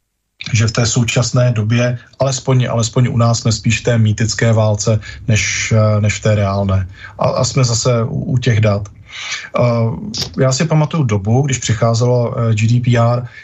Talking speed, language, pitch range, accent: 160 wpm, Czech, 110-130 Hz, native